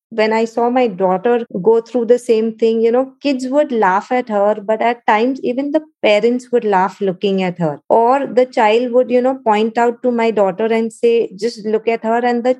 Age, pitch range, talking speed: 20-39, 205-245 Hz, 225 wpm